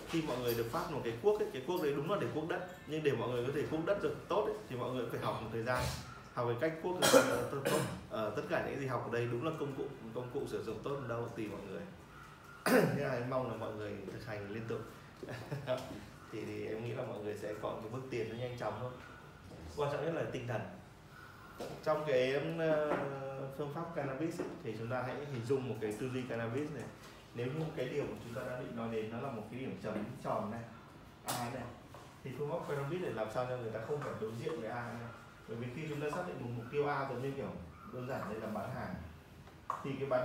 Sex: male